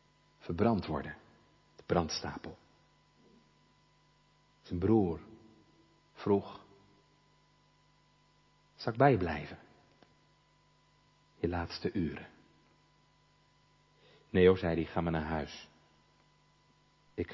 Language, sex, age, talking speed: Dutch, male, 50-69, 75 wpm